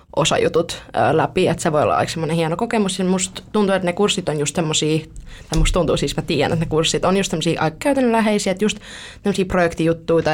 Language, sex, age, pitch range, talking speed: Finnish, female, 20-39, 160-190 Hz, 190 wpm